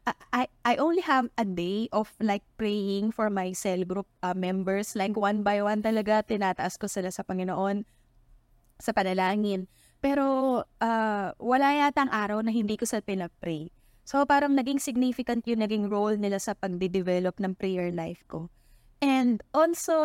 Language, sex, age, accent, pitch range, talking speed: Filipino, female, 20-39, native, 190-245 Hz, 160 wpm